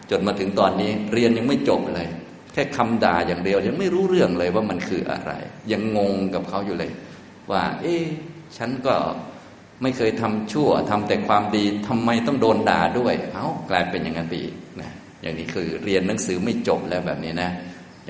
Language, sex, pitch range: Thai, male, 90-120 Hz